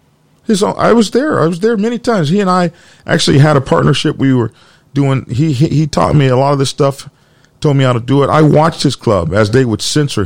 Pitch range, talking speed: 110-160 Hz, 255 wpm